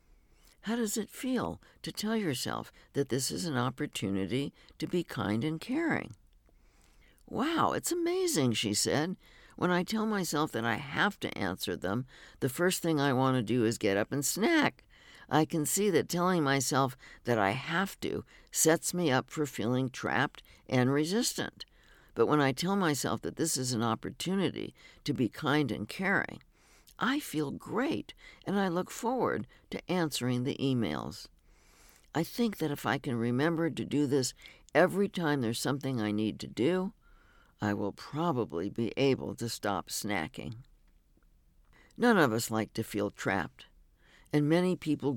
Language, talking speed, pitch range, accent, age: English, 165 wpm, 115-165 Hz, American, 60-79